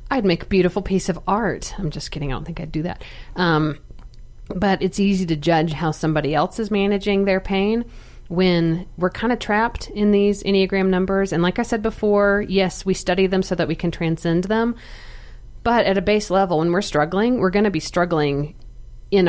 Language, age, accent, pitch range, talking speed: English, 40-59, American, 155-195 Hz, 210 wpm